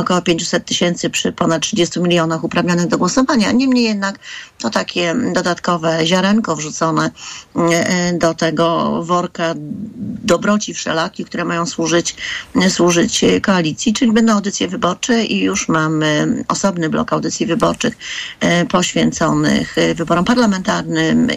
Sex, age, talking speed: female, 40-59, 115 wpm